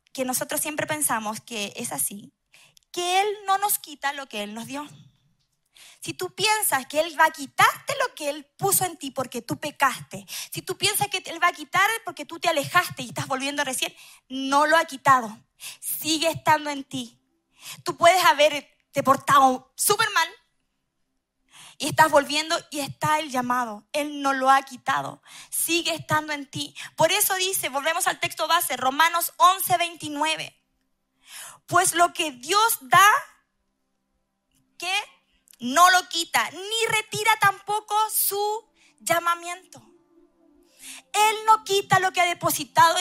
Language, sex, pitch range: Spanish, female, 265-360 Hz